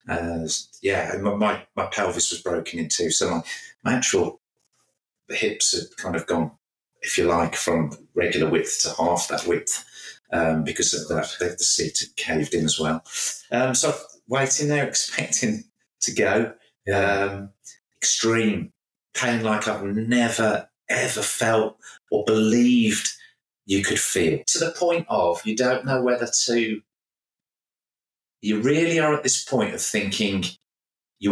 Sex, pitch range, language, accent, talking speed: male, 95-130 Hz, English, British, 150 wpm